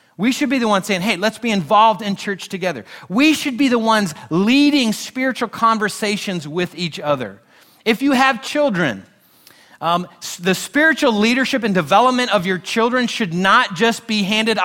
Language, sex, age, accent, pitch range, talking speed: English, male, 30-49, American, 155-215 Hz, 170 wpm